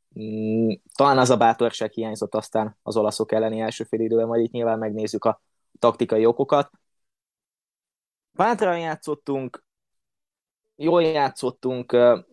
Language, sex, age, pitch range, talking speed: Hungarian, male, 20-39, 115-145 Hz, 110 wpm